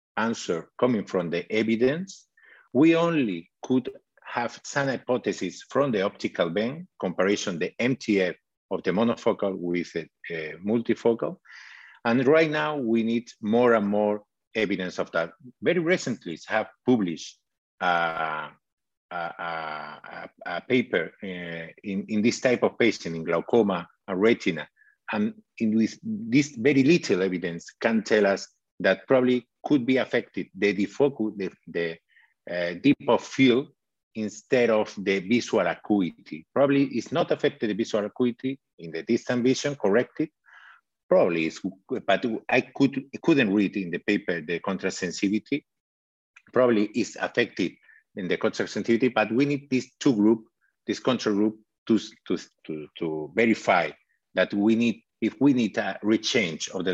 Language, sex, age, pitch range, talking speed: English, male, 50-69, 95-130 Hz, 150 wpm